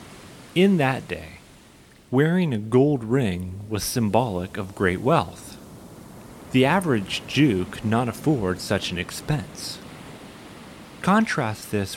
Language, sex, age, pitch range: English, male, 30-49, 95-125 Hz